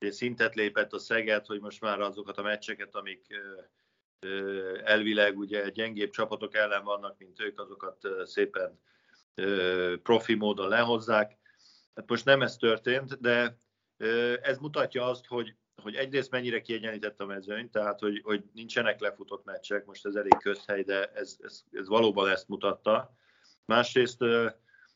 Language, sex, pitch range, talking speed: Hungarian, male, 105-120 Hz, 130 wpm